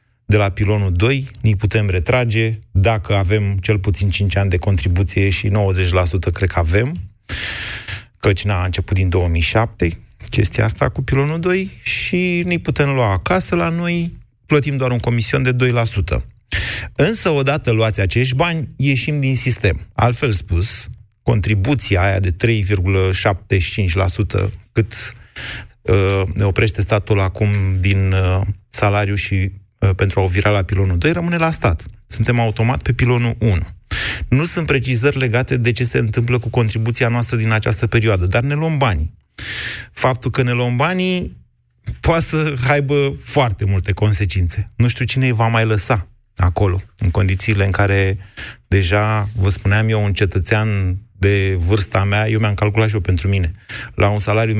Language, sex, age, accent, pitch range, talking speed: Romanian, male, 30-49, native, 95-120 Hz, 155 wpm